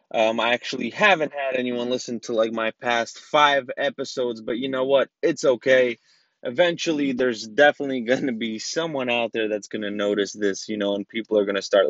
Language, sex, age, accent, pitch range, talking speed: English, male, 20-39, American, 115-135 Hz, 205 wpm